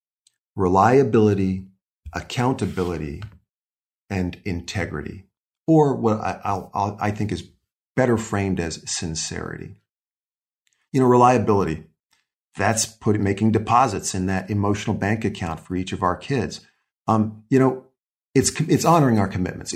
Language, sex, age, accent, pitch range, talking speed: English, male, 40-59, American, 95-110 Hz, 120 wpm